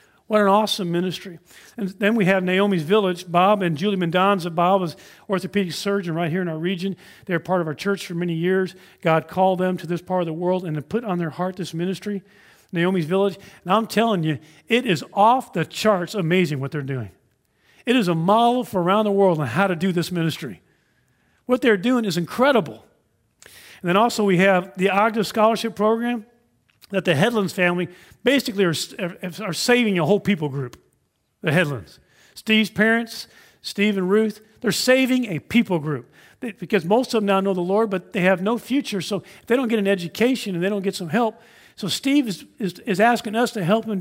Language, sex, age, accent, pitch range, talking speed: English, male, 50-69, American, 175-225 Hz, 210 wpm